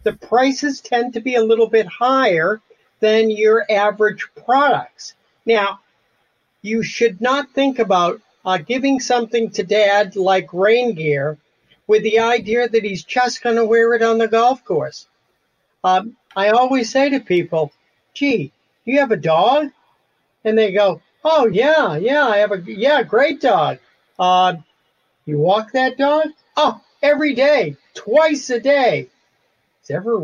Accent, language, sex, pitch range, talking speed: American, English, male, 195-265 Hz, 150 wpm